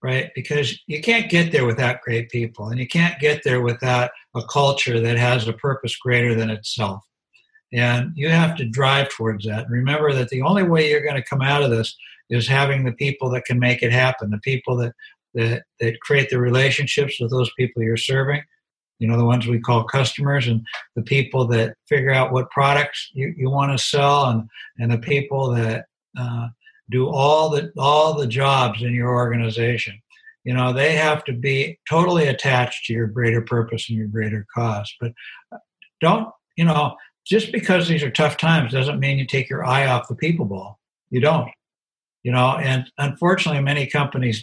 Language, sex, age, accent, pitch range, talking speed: English, male, 60-79, American, 120-145 Hz, 195 wpm